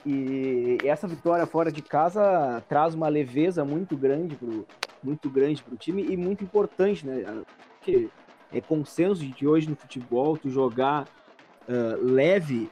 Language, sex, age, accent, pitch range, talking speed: Portuguese, male, 20-39, Brazilian, 125-165 Hz, 130 wpm